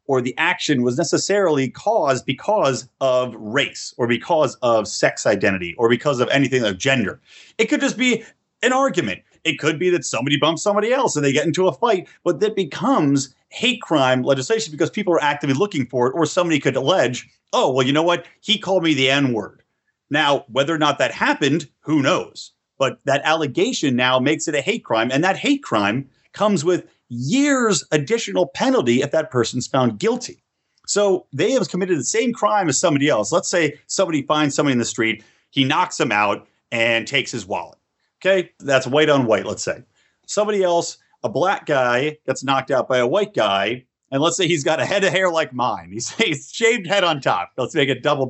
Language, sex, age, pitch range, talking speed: English, male, 30-49, 130-190 Hz, 205 wpm